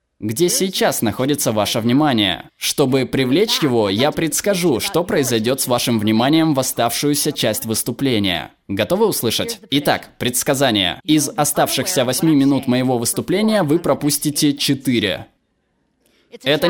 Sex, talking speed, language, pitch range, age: male, 120 wpm, Russian, 120-155 Hz, 20-39